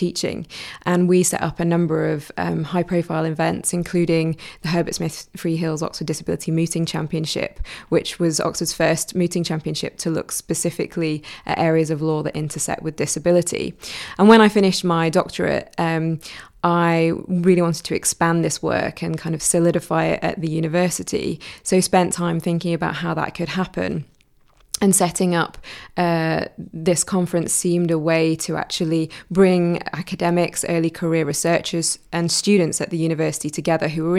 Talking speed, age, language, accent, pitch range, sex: 165 wpm, 20-39, English, British, 160-180 Hz, female